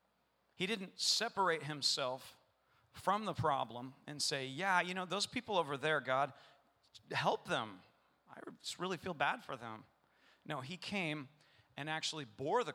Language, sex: English, male